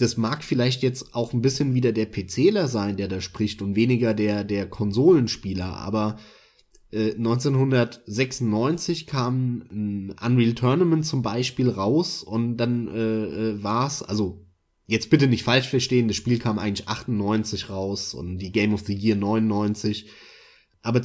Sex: male